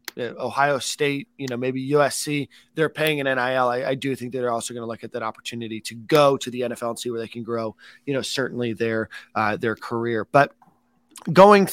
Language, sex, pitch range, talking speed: English, male, 120-140 Hz, 215 wpm